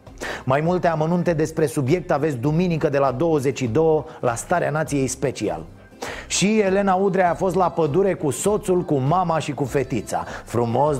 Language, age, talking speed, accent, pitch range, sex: Romanian, 30-49, 160 wpm, native, 140-200 Hz, male